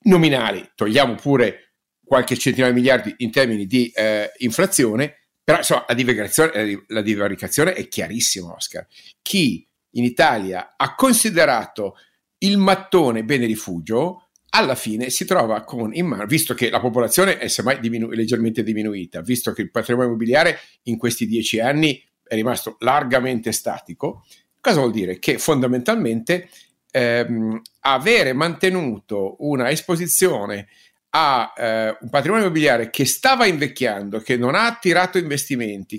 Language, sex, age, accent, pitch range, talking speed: Italian, male, 50-69, native, 115-160 Hz, 135 wpm